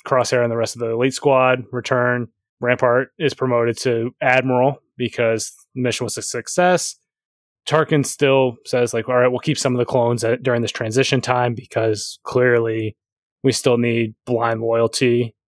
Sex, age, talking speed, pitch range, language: male, 20-39, 170 wpm, 115-130 Hz, English